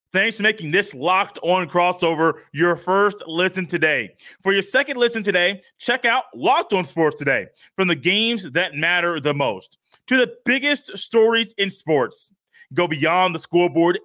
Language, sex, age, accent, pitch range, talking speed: English, male, 30-49, American, 175-225 Hz, 165 wpm